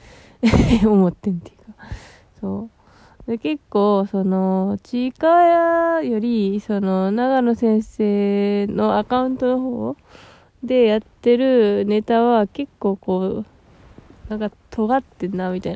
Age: 20-39